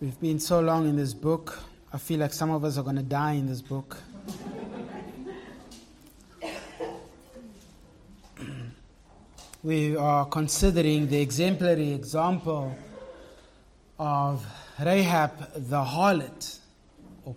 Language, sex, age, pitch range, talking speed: English, male, 30-49, 140-170 Hz, 105 wpm